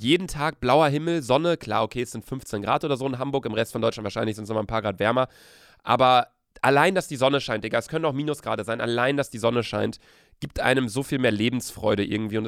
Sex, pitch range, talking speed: male, 105-135 Hz, 250 wpm